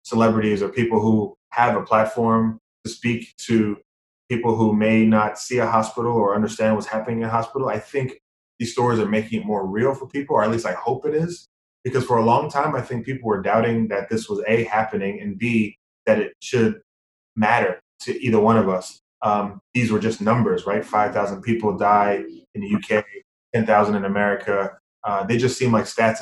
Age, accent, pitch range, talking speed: 20-39, American, 105-125 Hz, 205 wpm